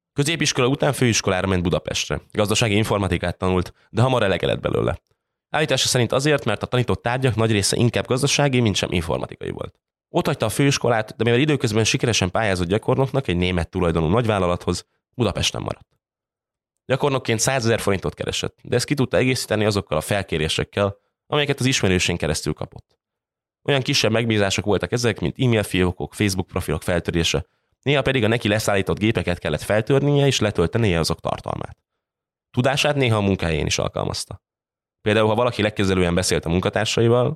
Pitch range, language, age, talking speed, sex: 90-125 Hz, Hungarian, 20-39, 150 wpm, male